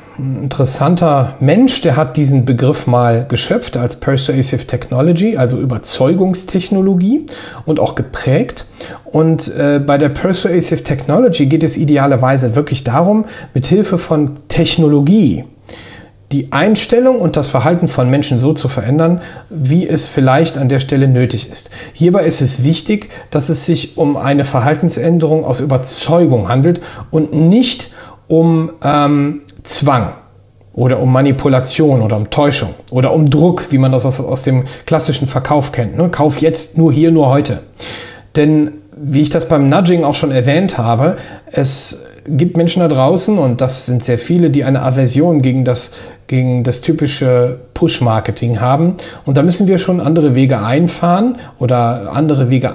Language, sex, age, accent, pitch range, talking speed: German, male, 40-59, German, 125-165 Hz, 150 wpm